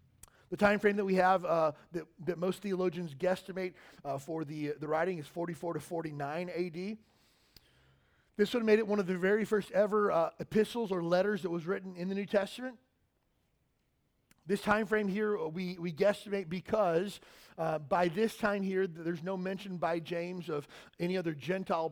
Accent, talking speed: American, 185 wpm